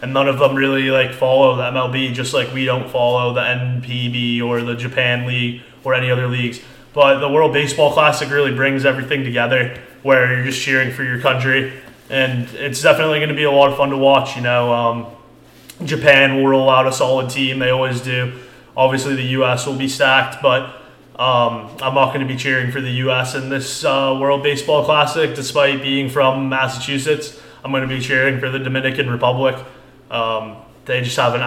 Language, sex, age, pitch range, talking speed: English, male, 20-39, 125-135 Hz, 200 wpm